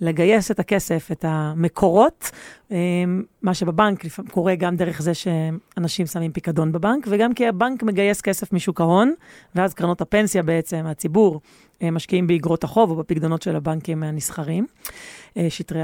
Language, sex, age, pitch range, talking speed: Hebrew, female, 30-49, 175-225 Hz, 135 wpm